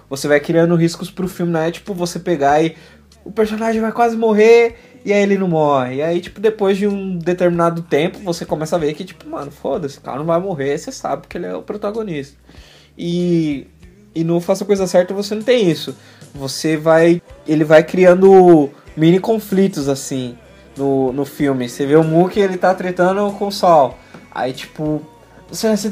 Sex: male